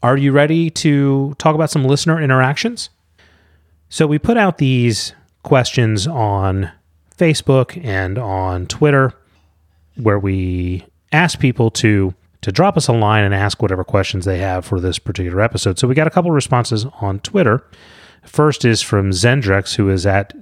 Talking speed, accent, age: 165 wpm, American, 30-49